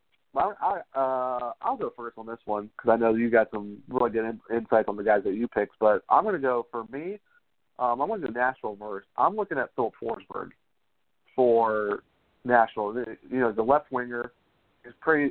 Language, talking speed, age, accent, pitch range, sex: English, 205 wpm, 40-59, American, 110-140 Hz, male